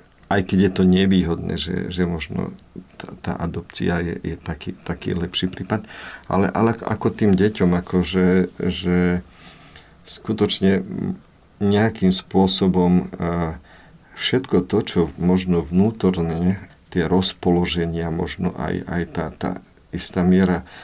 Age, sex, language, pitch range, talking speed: 50-69, male, Slovak, 85-95 Hz, 120 wpm